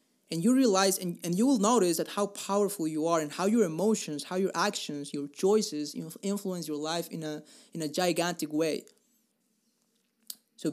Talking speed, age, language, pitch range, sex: 190 wpm, 20-39, English, 165-220 Hz, male